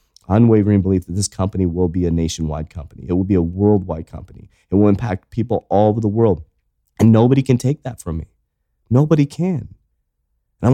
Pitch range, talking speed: 90-130 Hz, 195 wpm